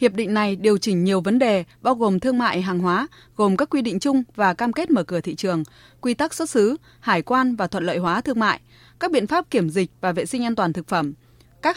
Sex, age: female, 20-39